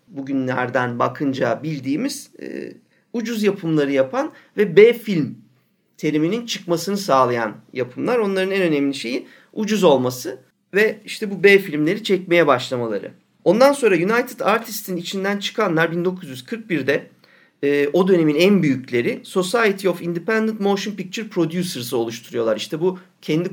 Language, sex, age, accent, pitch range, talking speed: Turkish, male, 50-69, native, 140-195 Hz, 130 wpm